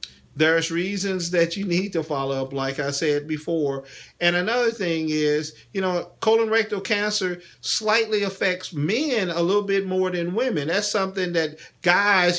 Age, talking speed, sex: 50-69, 165 wpm, male